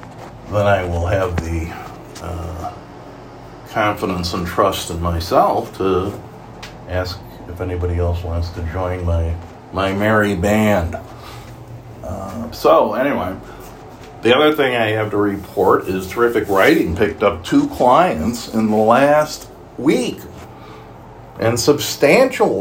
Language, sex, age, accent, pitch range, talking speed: English, male, 50-69, American, 90-120 Hz, 120 wpm